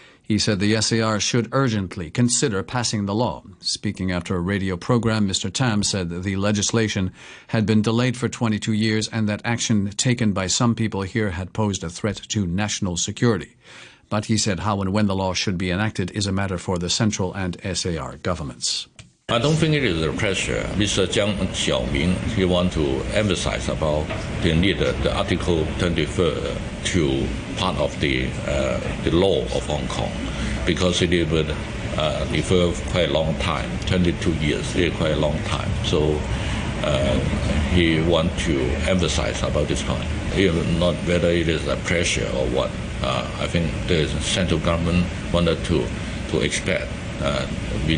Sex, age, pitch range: male, 60-79, 85-110 Hz